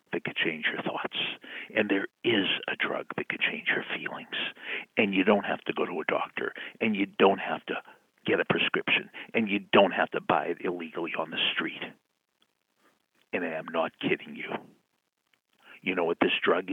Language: English